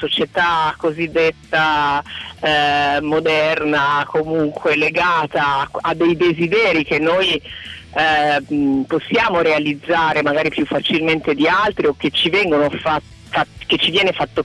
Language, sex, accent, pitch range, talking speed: Italian, female, native, 145-180 Hz, 115 wpm